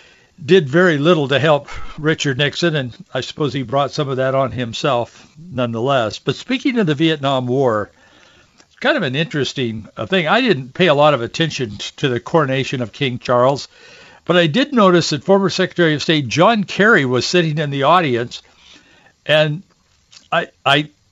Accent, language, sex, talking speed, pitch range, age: American, English, male, 175 wpm, 135-185 Hz, 60-79